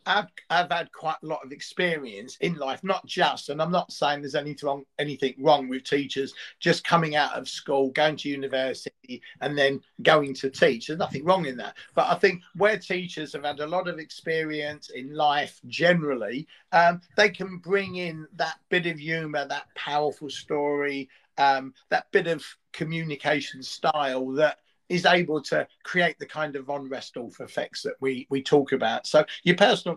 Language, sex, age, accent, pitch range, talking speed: English, male, 40-59, British, 140-175 Hz, 185 wpm